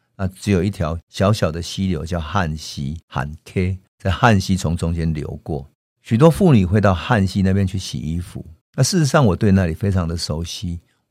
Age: 50-69